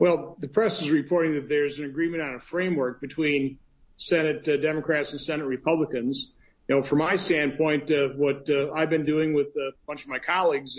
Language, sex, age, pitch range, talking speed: English, male, 50-69, 150-180 Hz, 200 wpm